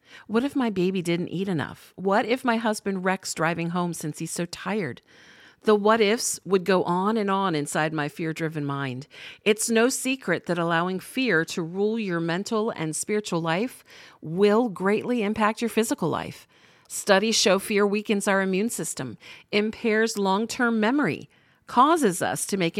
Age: 50-69